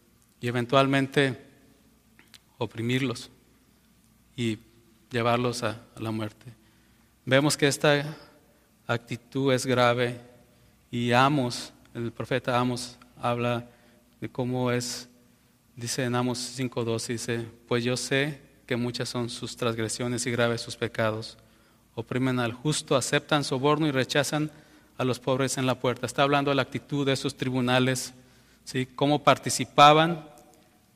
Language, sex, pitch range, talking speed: Spanish, male, 120-140 Hz, 125 wpm